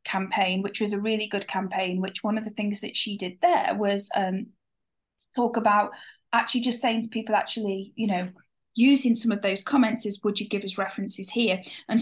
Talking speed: 205 wpm